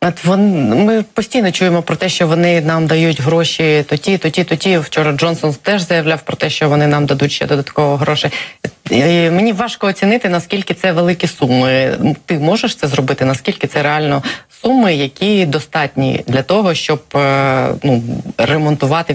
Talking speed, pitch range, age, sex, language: 160 wpm, 140-165 Hz, 20-39, female, Ukrainian